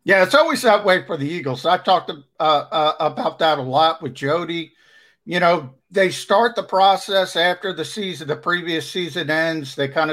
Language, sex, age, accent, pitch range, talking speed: English, male, 50-69, American, 140-180 Hz, 195 wpm